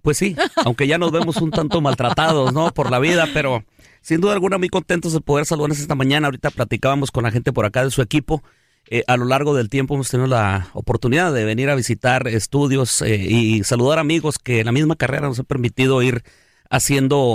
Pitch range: 110-140 Hz